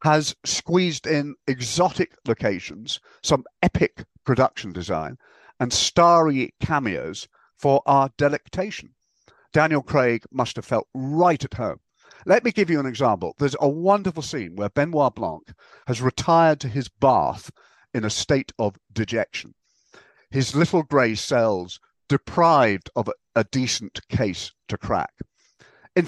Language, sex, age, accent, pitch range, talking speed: English, male, 50-69, British, 115-170 Hz, 135 wpm